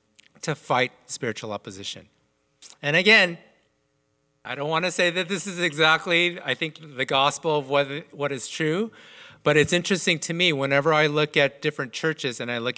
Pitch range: 125-205 Hz